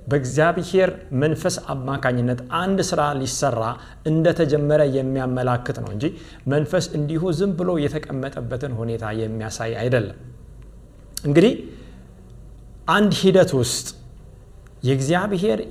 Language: Amharic